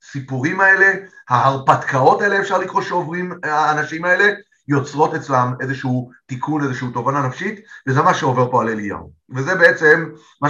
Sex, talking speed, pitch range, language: male, 145 wpm, 125-160 Hz, Hebrew